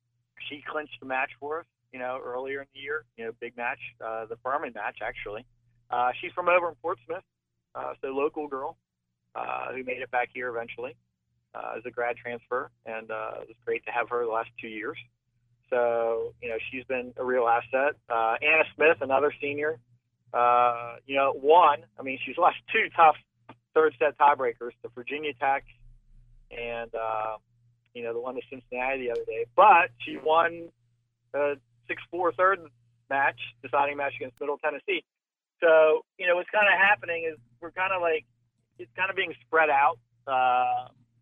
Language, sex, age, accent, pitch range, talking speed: English, male, 40-59, American, 120-150 Hz, 185 wpm